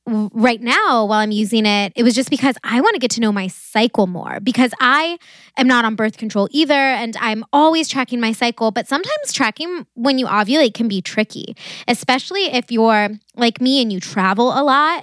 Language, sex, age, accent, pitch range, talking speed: English, female, 20-39, American, 220-260 Hz, 210 wpm